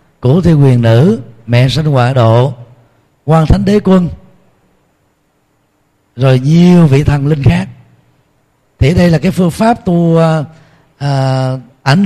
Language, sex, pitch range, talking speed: Vietnamese, male, 125-170 Hz, 135 wpm